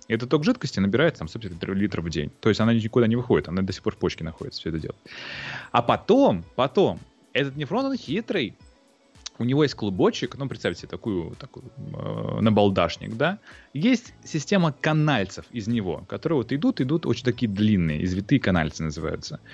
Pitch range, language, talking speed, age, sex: 95-155 Hz, Russian, 185 wpm, 30-49, male